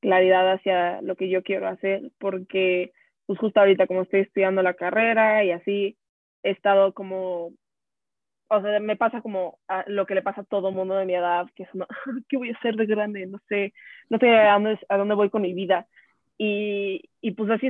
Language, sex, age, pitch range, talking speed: Spanish, female, 20-39, 190-220 Hz, 210 wpm